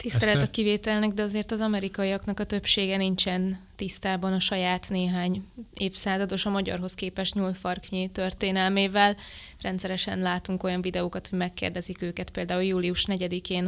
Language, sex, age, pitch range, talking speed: Hungarian, female, 20-39, 185-200 Hz, 130 wpm